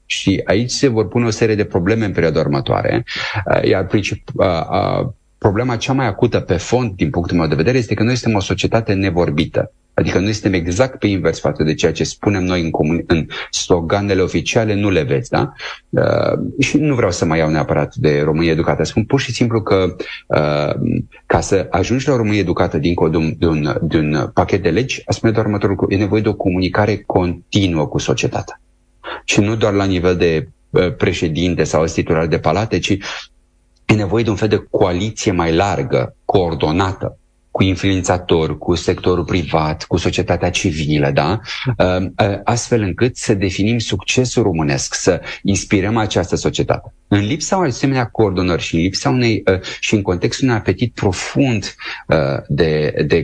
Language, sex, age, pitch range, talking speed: Romanian, male, 30-49, 85-115 Hz, 175 wpm